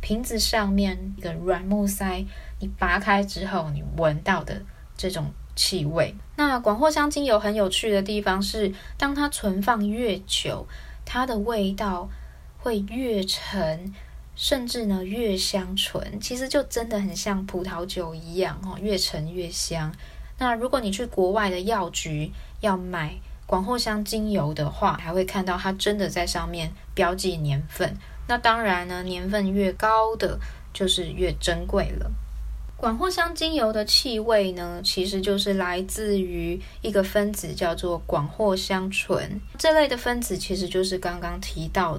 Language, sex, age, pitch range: Chinese, female, 20-39, 175-210 Hz